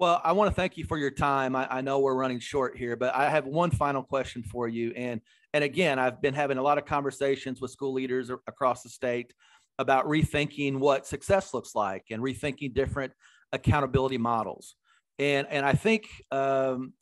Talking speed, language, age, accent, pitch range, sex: 200 wpm, English, 40-59, American, 125-155 Hz, male